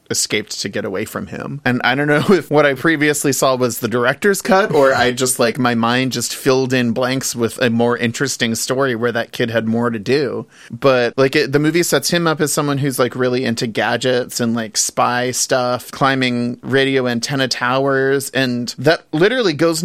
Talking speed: 205 wpm